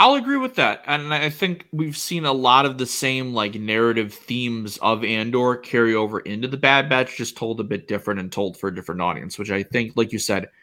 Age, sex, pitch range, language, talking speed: 30-49, male, 105-135 Hz, English, 235 wpm